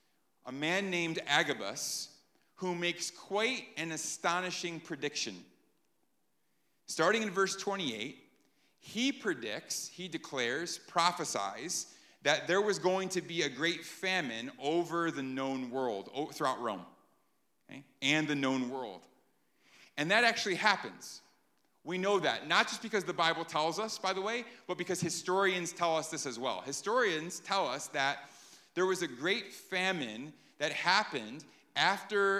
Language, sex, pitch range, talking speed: English, male, 150-190 Hz, 140 wpm